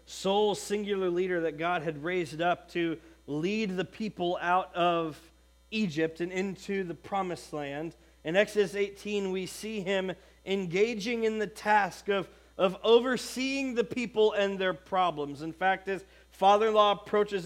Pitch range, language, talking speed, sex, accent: 180-225 Hz, English, 150 wpm, male, American